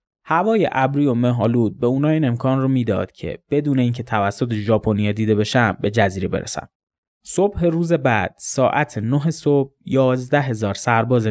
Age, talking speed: 20-39, 150 wpm